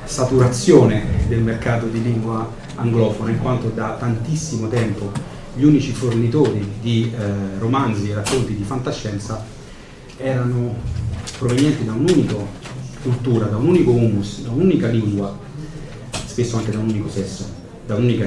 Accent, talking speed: native, 130 wpm